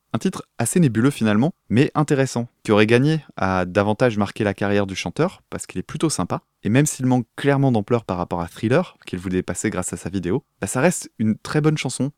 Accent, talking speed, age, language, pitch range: French, 225 wpm, 20-39, French, 95-130 Hz